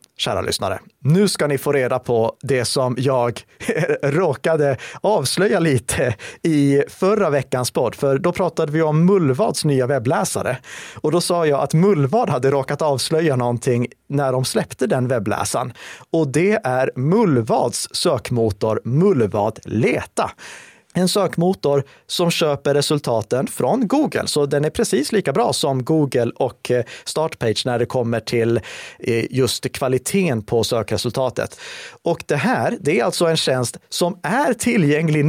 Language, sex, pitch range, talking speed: Swedish, male, 125-170 Hz, 145 wpm